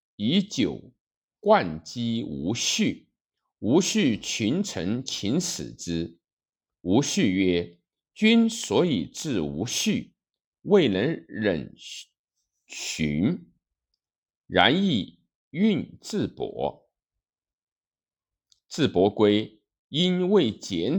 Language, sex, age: Chinese, male, 50-69